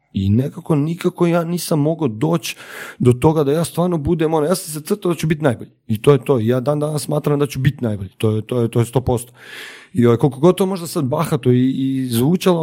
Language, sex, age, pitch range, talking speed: Croatian, male, 30-49, 135-165 Hz, 235 wpm